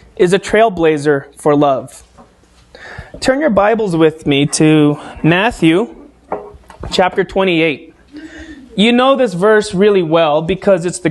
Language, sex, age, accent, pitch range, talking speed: English, male, 30-49, American, 160-215 Hz, 125 wpm